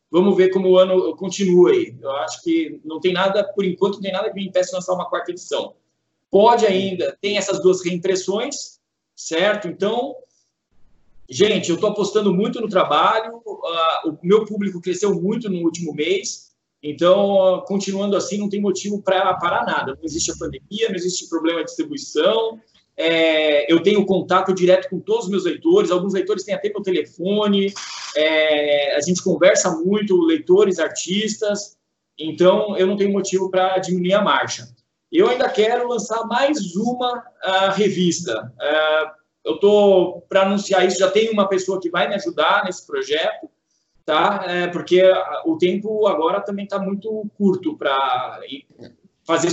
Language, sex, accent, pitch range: Portuguese, male, Brazilian, 180-210 Hz